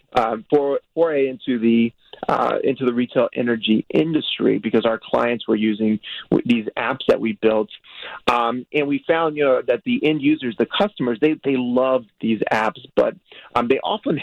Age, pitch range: 30-49, 110-130 Hz